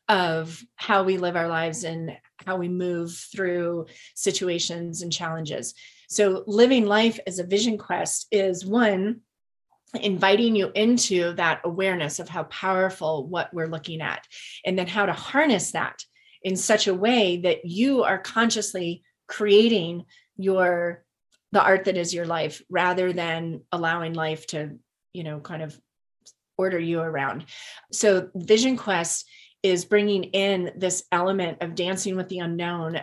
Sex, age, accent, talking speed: female, 30-49, American, 150 wpm